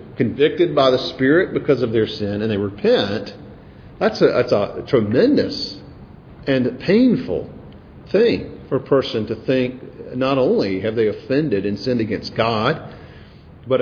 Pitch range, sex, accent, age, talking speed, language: 110-145 Hz, male, American, 50-69, 150 wpm, English